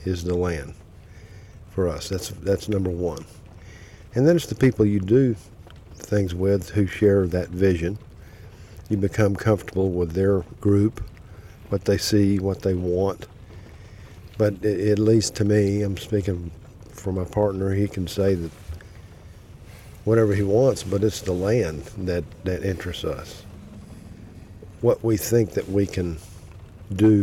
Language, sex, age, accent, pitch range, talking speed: English, male, 50-69, American, 90-105 Hz, 150 wpm